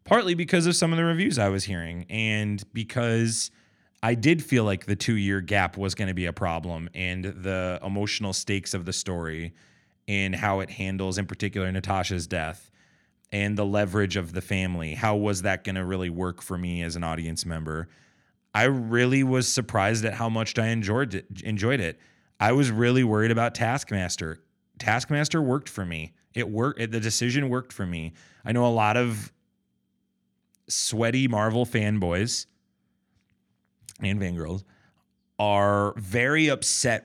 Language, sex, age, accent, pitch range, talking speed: English, male, 20-39, American, 95-130 Hz, 160 wpm